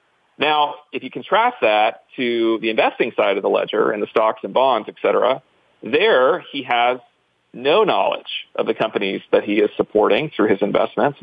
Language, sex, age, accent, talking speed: English, male, 40-59, American, 180 wpm